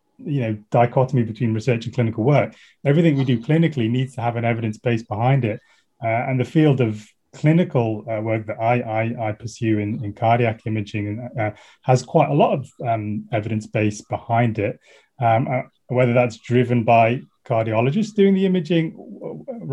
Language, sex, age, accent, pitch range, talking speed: English, male, 30-49, British, 115-140 Hz, 185 wpm